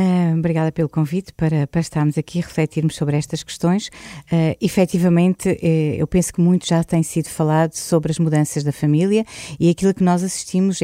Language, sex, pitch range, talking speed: Portuguese, female, 145-165 Hz, 185 wpm